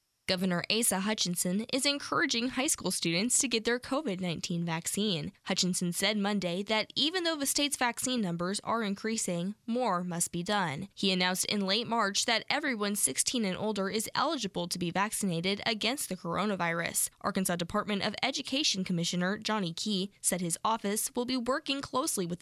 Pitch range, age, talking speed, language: 180-240 Hz, 10-29, 165 wpm, English